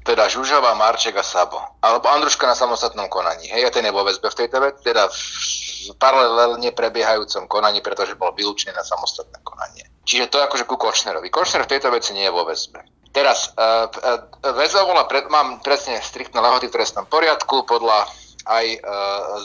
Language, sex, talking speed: Slovak, male, 190 wpm